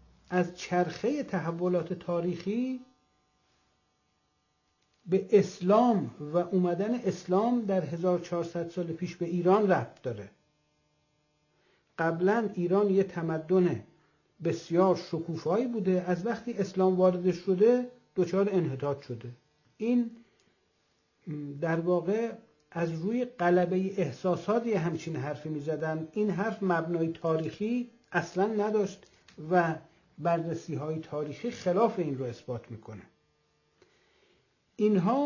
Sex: male